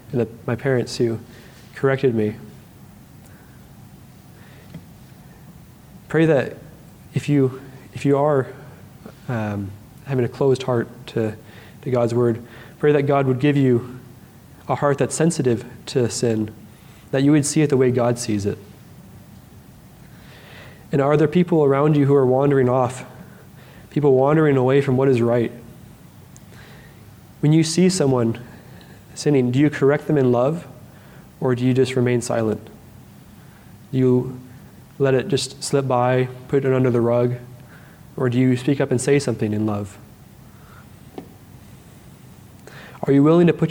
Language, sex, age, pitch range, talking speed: English, male, 20-39, 120-140 Hz, 145 wpm